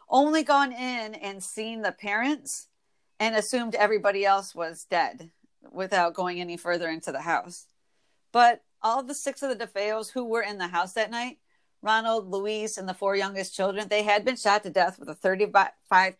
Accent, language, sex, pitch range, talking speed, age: American, English, female, 185-230 Hz, 195 wpm, 40-59